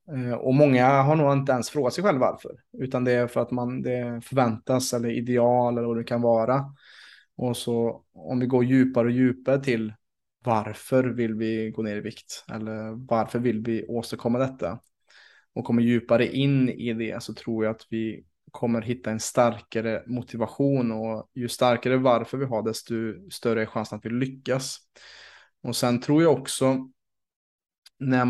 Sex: male